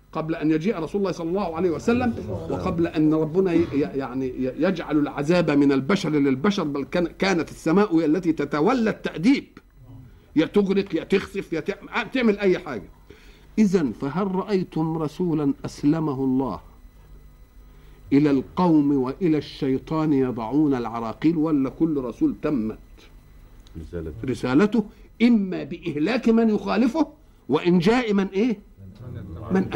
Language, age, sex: Arabic, 50-69, male